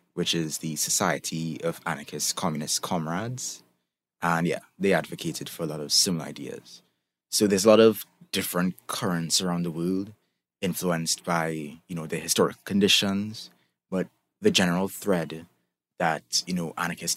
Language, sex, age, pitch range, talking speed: English, male, 20-39, 80-100 Hz, 150 wpm